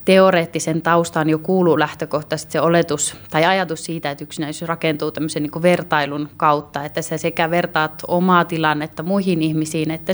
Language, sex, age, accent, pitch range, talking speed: Finnish, female, 30-49, native, 155-170 Hz, 140 wpm